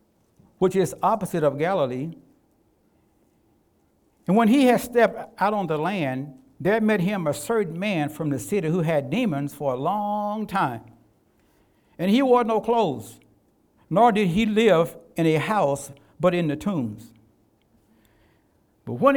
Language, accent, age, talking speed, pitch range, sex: English, American, 60-79, 150 wpm, 145-210 Hz, male